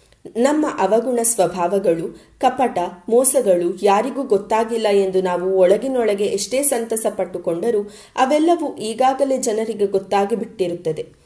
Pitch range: 190-255 Hz